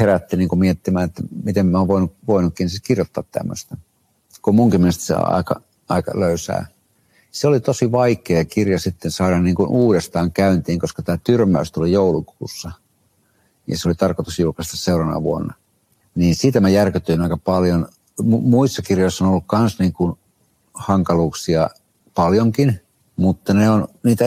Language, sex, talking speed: Finnish, male, 150 wpm